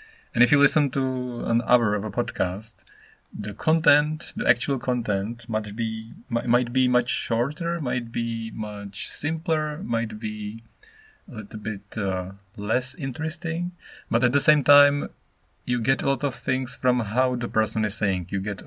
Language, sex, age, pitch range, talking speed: English, male, 30-49, 100-125 Hz, 165 wpm